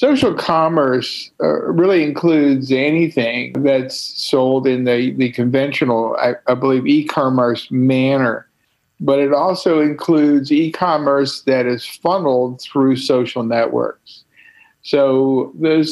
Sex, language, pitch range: male, English, 130-180 Hz